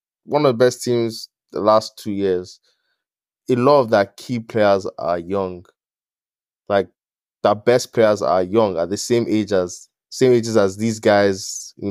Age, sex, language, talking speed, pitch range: 10-29, male, English, 170 wpm, 95-120 Hz